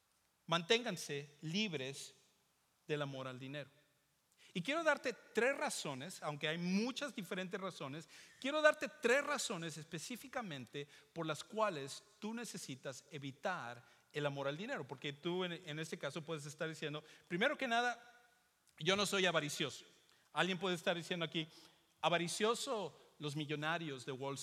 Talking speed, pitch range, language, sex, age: 140 wpm, 150-220 Hz, English, male, 50-69